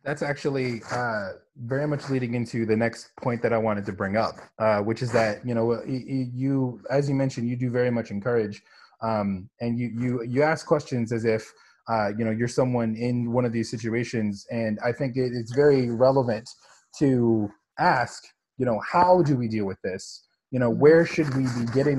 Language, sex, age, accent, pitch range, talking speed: English, male, 20-39, American, 120-150 Hz, 200 wpm